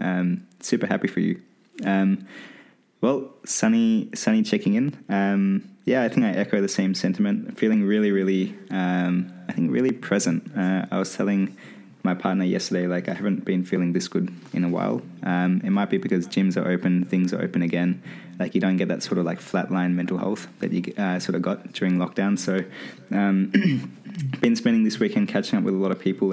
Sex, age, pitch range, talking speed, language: male, 20-39, 90-100 Hz, 205 wpm, English